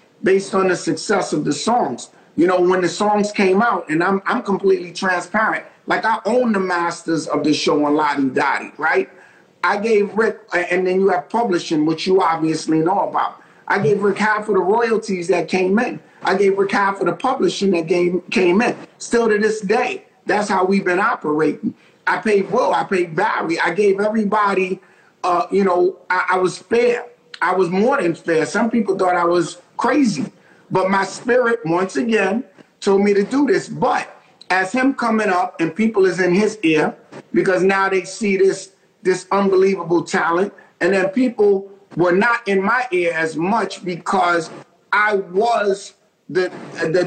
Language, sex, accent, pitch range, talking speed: English, male, American, 180-210 Hz, 185 wpm